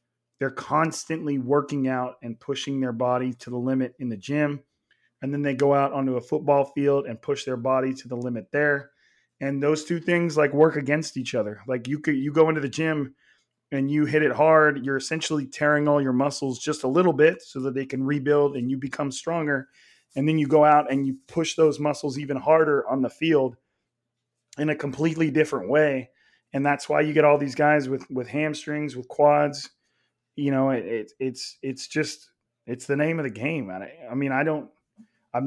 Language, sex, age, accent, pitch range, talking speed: English, male, 30-49, American, 130-150 Hz, 210 wpm